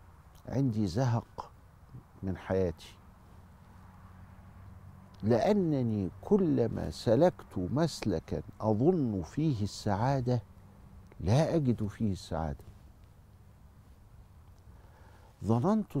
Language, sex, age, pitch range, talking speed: Arabic, male, 50-69, 90-120 Hz, 60 wpm